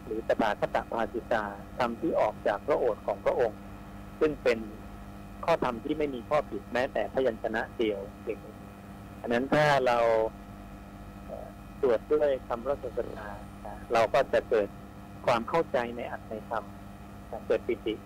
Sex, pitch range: male, 100-120 Hz